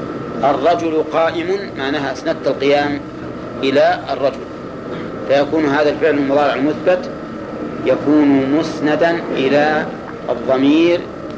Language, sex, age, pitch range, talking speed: Arabic, male, 50-69, 145-165 Hz, 85 wpm